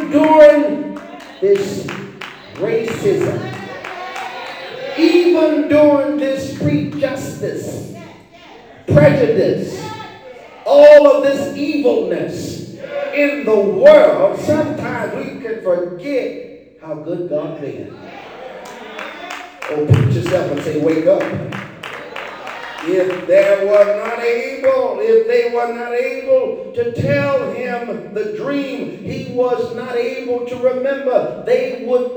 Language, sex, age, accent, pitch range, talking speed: English, male, 40-59, American, 185-290 Hz, 100 wpm